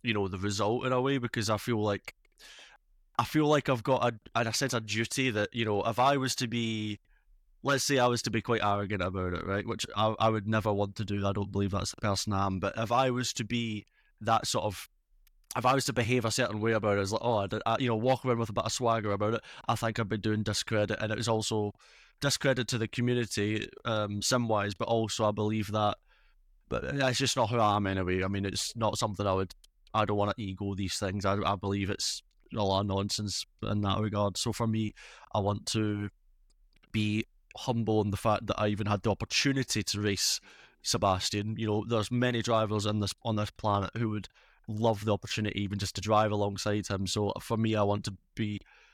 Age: 20-39